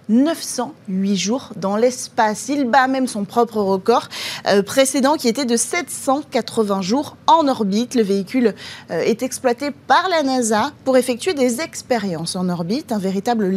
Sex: female